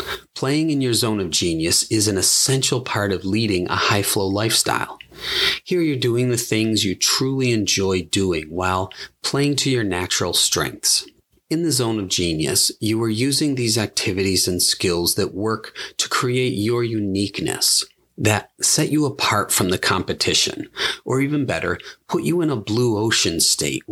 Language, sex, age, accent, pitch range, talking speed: English, male, 30-49, American, 95-130 Hz, 165 wpm